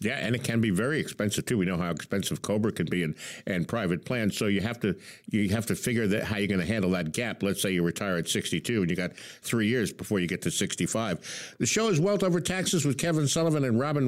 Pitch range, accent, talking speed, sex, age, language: 115-150 Hz, American, 275 wpm, male, 60-79, English